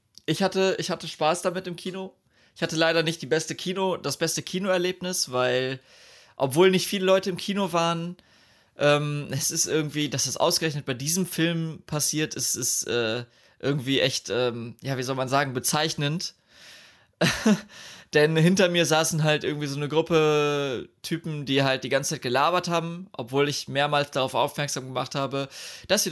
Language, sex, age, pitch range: German, male, 20-39, 130-165 Hz